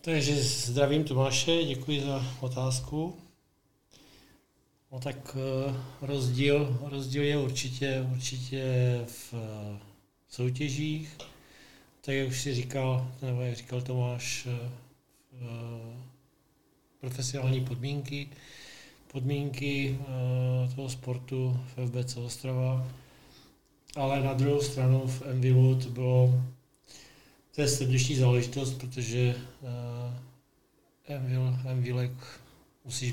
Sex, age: male, 40-59